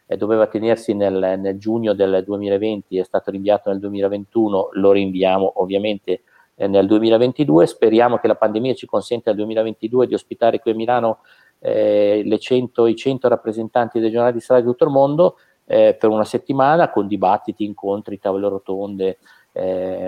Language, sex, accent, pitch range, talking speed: Italian, male, native, 95-110 Hz, 160 wpm